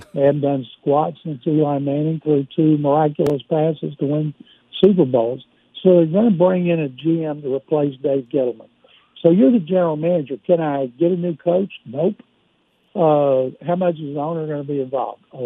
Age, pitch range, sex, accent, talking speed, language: 60-79, 145-175 Hz, male, American, 195 wpm, English